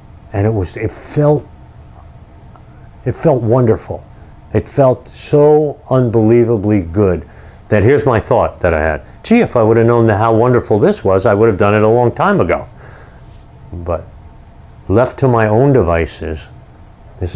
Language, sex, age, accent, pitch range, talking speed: English, male, 50-69, American, 90-115 Hz, 160 wpm